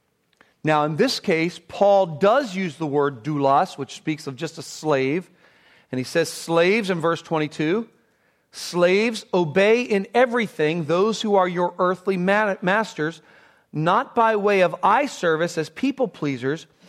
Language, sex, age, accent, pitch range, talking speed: English, male, 40-59, American, 170-230 Hz, 150 wpm